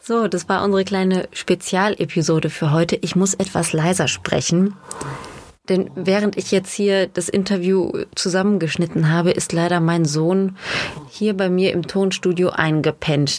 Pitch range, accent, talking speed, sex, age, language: 170-200 Hz, German, 145 wpm, female, 30-49, German